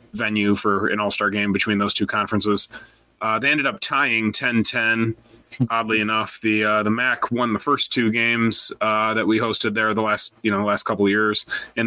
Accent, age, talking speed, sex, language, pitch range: American, 30-49, 200 wpm, male, English, 110-125 Hz